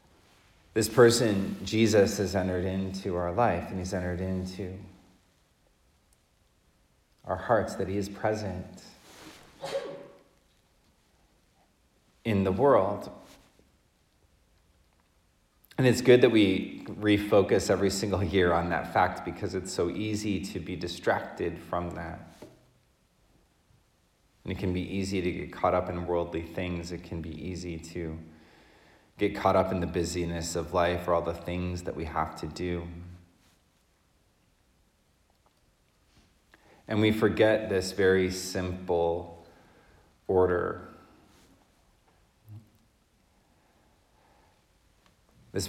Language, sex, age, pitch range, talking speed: English, male, 30-49, 85-100 Hz, 110 wpm